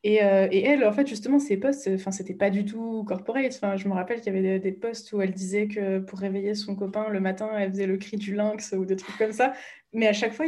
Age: 20-39